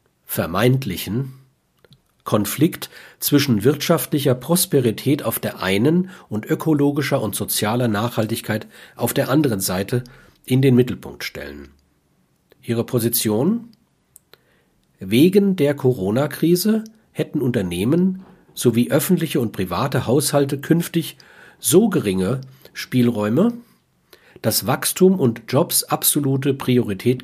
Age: 50-69